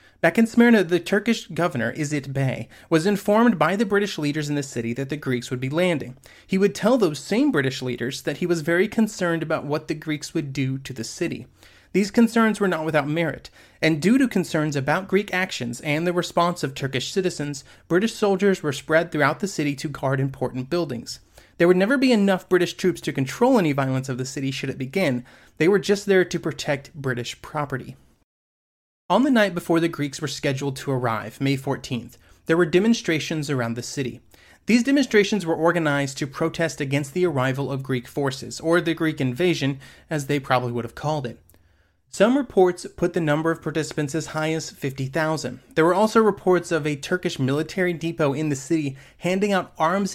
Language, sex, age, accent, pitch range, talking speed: English, male, 30-49, American, 135-180 Hz, 200 wpm